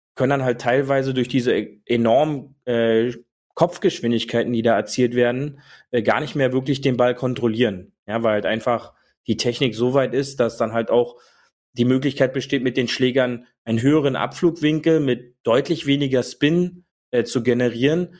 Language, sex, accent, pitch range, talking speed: German, male, German, 120-135 Hz, 160 wpm